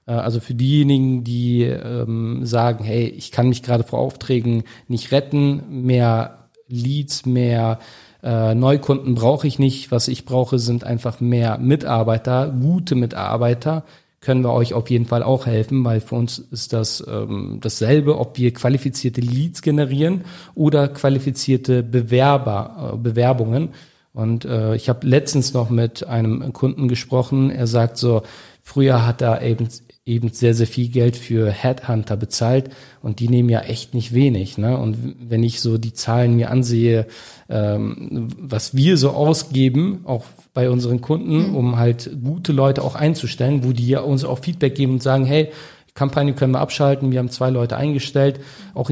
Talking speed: 165 wpm